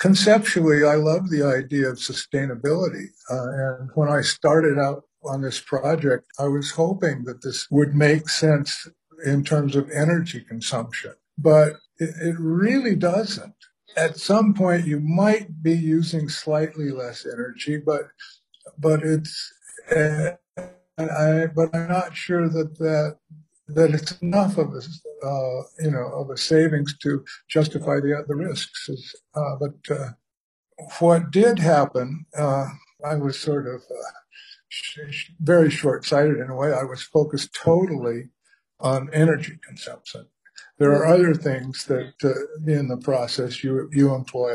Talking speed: 145 wpm